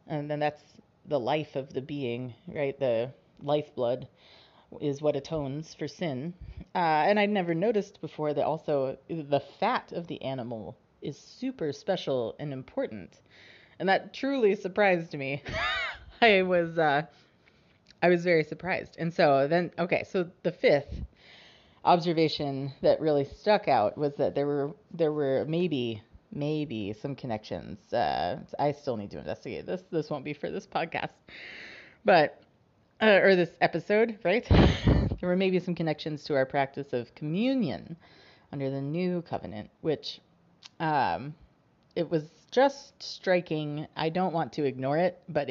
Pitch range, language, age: 140-180 Hz, English, 30-49